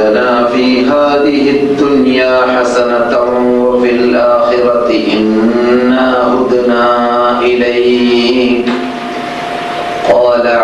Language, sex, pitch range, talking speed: Malayalam, male, 120-125 Hz, 95 wpm